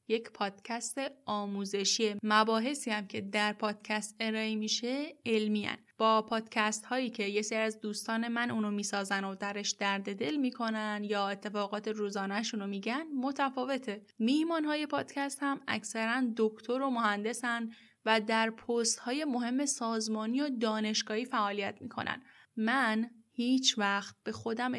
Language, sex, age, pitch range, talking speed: Persian, female, 10-29, 210-245 Hz, 135 wpm